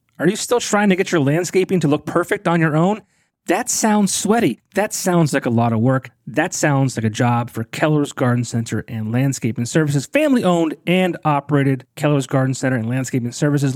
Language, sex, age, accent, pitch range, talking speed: English, male, 30-49, American, 135-170 Hz, 195 wpm